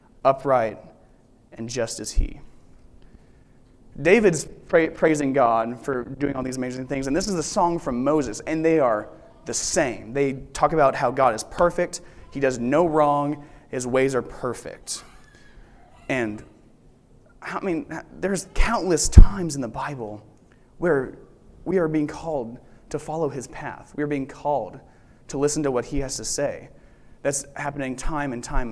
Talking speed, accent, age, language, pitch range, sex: 160 wpm, American, 20-39, English, 120-150 Hz, male